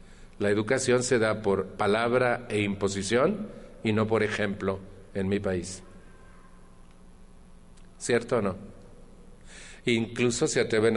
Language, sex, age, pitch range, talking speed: Spanish, male, 40-59, 100-125 Hz, 115 wpm